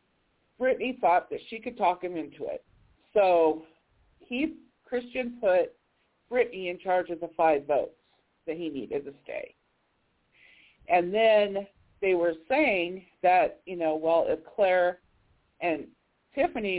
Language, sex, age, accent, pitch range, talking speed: English, female, 50-69, American, 170-240 Hz, 135 wpm